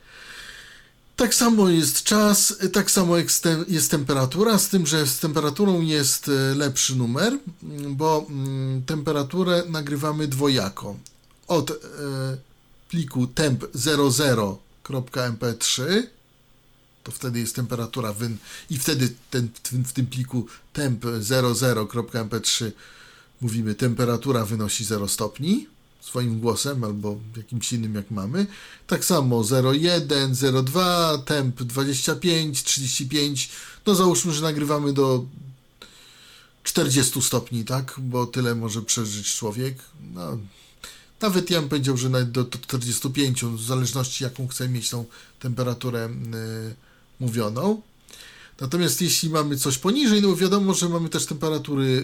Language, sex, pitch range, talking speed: Polish, male, 125-160 Hz, 110 wpm